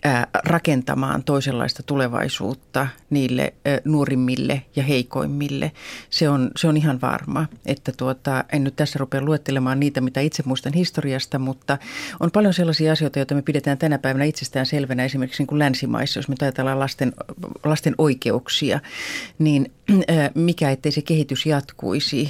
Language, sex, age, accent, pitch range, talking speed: Finnish, female, 30-49, native, 135-150 Hz, 145 wpm